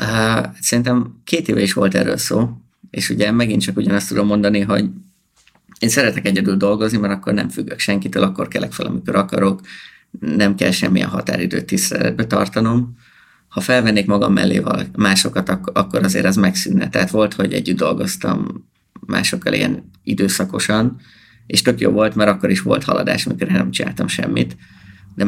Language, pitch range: Hungarian, 95-110 Hz